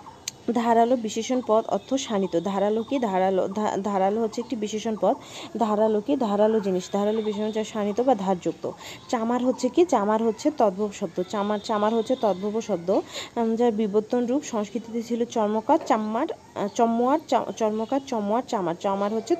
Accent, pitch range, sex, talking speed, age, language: native, 205-255 Hz, female, 150 wpm, 30-49, Bengali